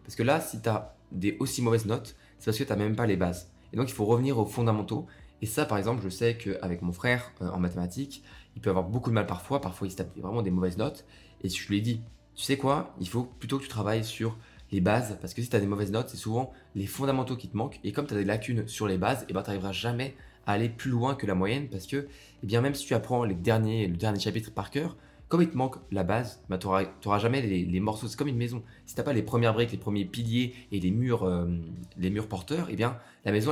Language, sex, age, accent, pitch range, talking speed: French, male, 20-39, French, 100-125 Hz, 285 wpm